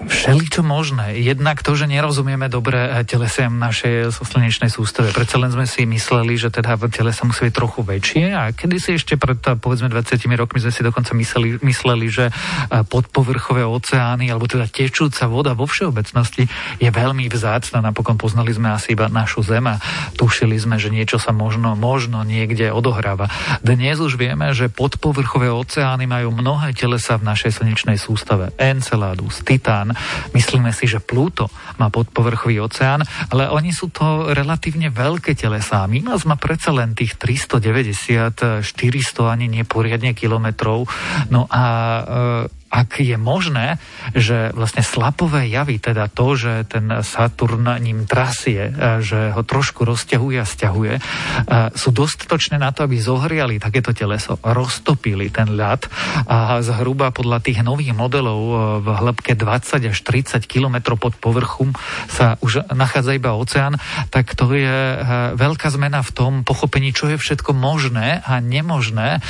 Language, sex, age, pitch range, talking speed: Slovak, male, 40-59, 115-135 Hz, 150 wpm